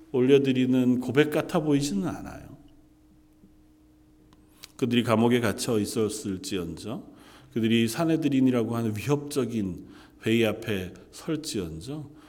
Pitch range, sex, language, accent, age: 105-155 Hz, male, Korean, native, 40-59